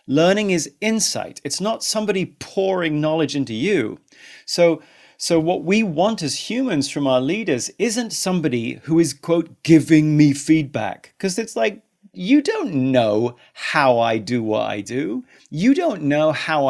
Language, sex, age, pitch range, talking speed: English, male, 40-59, 145-220 Hz, 160 wpm